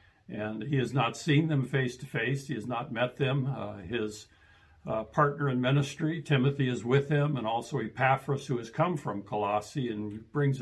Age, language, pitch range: 60-79, English, 110-140 Hz